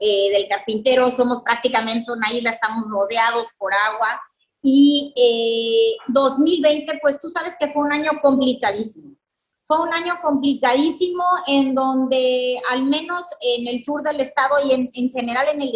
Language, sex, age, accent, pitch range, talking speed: Spanish, female, 30-49, Mexican, 250-295 Hz, 155 wpm